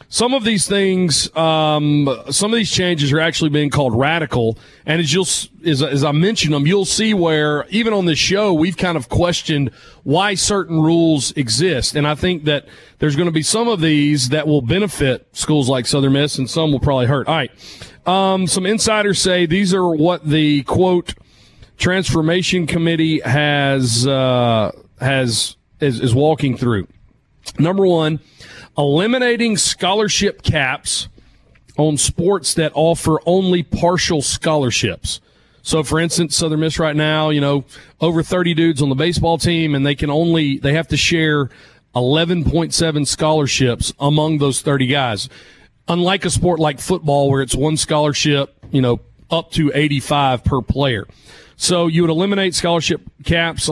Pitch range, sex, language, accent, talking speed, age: 140-170 Hz, male, English, American, 160 wpm, 40-59